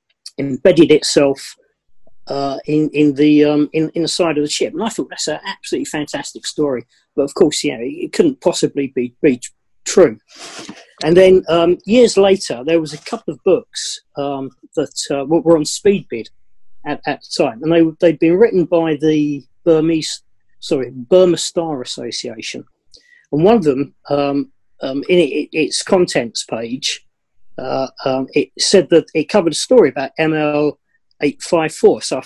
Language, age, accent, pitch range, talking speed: English, 40-59, British, 140-170 Hz, 170 wpm